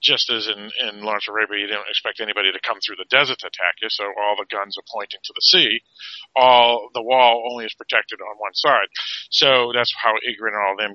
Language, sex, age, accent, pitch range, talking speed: English, male, 40-59, American, 105-125 Hz, 240 wpm